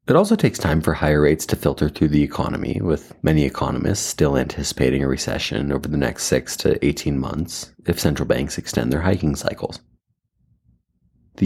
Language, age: English, 30-49